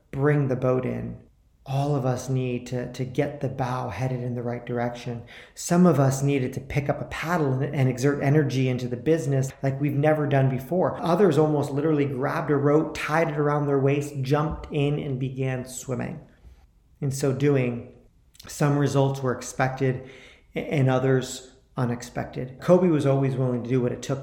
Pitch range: 125-145 Hz